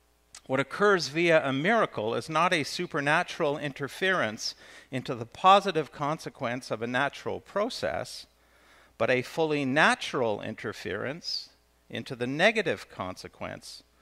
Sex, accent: male, American